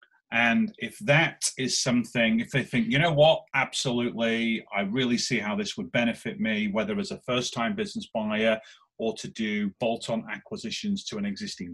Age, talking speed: 30-49, 175 wpm